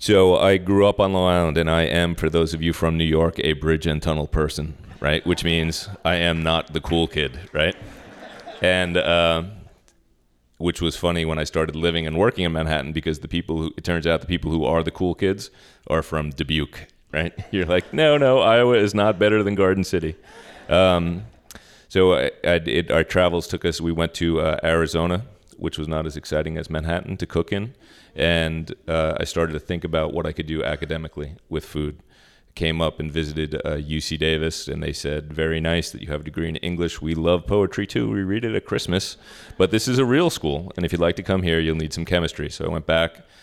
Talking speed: 220 wpm